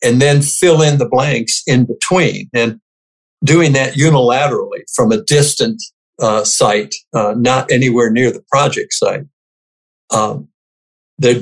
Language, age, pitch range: English, 60-79, 115-155 Hz